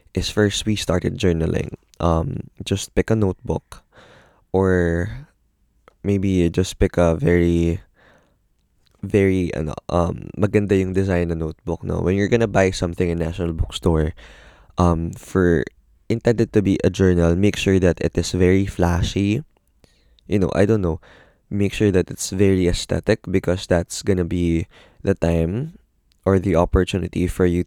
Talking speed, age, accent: 150 wpm, 20-39, native